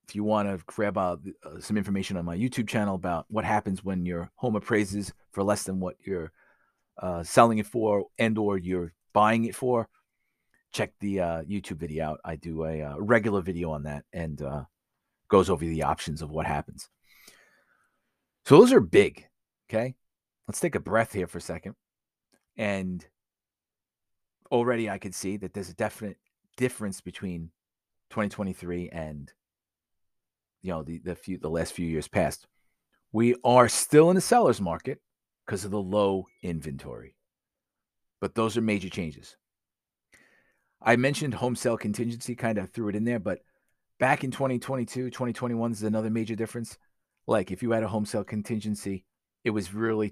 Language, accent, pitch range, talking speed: English, American, 90-115 Hz, 170 wpm